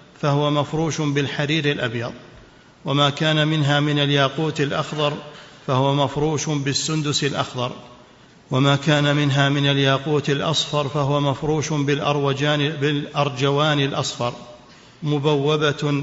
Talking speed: 95 wpm